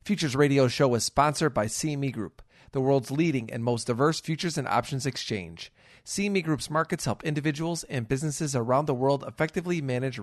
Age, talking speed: 40-59, 175 wpm